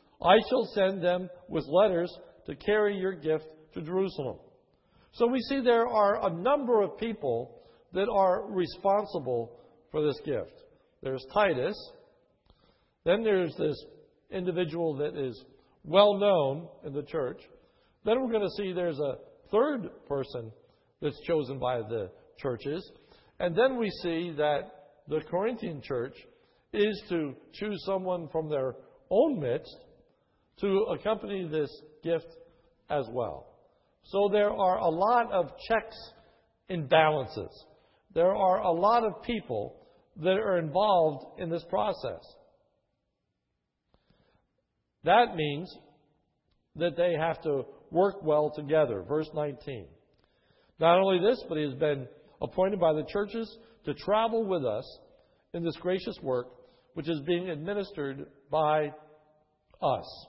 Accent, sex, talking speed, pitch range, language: American, male, 130 wpm, 155-210 Hz, English